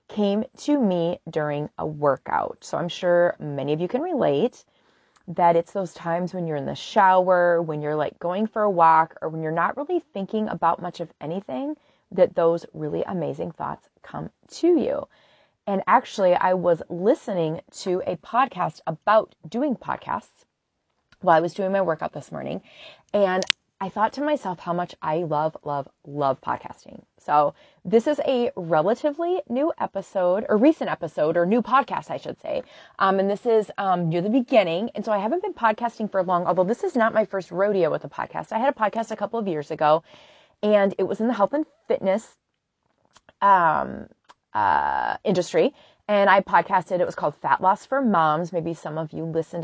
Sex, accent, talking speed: female, American, 190 wpm